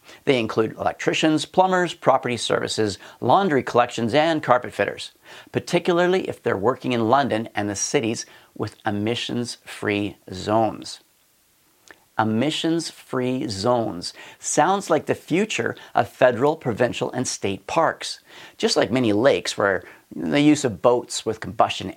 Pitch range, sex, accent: 110-155 Hz, male, American